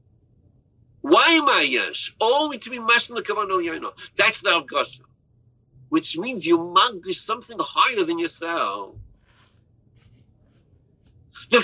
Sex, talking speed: male, 120 wpm